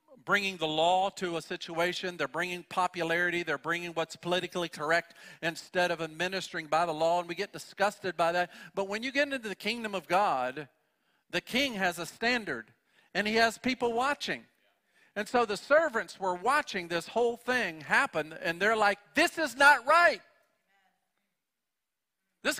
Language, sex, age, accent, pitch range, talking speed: English, male, 50-69, American, 165-230 Hz, 165 wpm